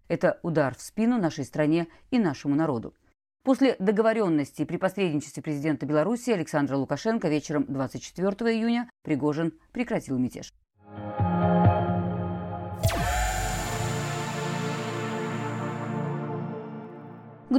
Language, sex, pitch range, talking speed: Russian, female, 145-205 Hz, 80 wpm